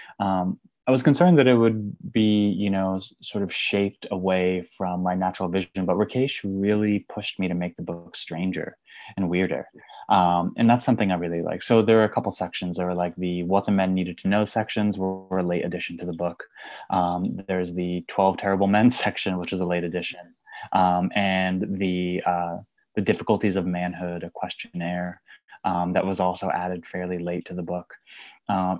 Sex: male